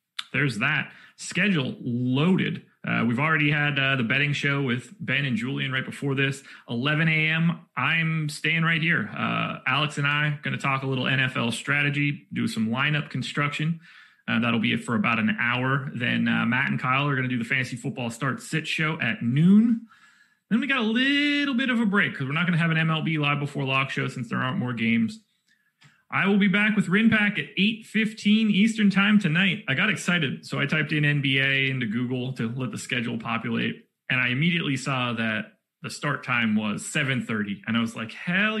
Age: 30-49